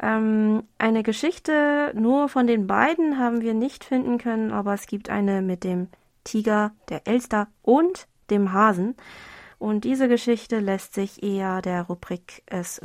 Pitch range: 190-235 Hz